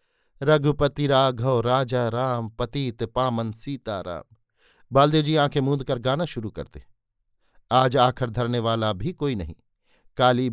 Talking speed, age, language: 135 wpm, 50-69, Hindi